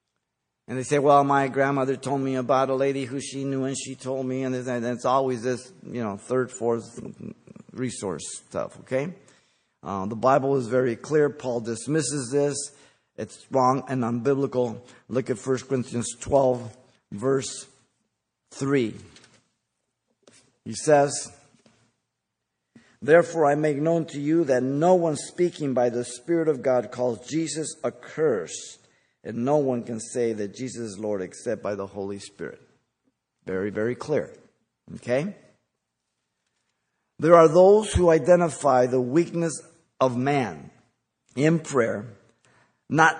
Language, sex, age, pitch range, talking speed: English, male, 50-69, 120-150 Hz, 140 wpm